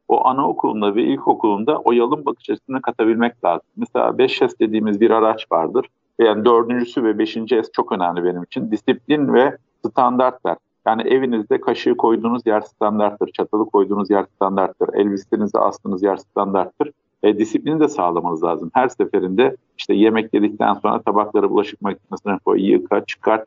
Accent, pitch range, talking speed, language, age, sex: native, 105-130 Hz, 145 wpm, Turkish, 50-69, male